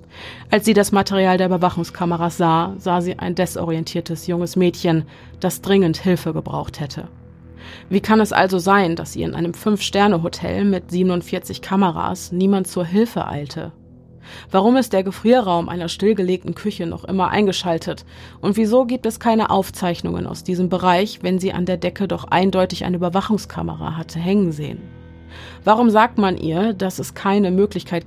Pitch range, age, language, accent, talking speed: 165-190 Hz, 30-49, German, German, 160 wpm